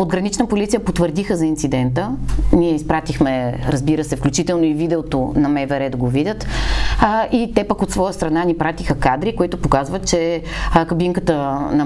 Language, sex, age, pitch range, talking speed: Bulgarian, female, 30-49, 150-185 Hz, 155 wpm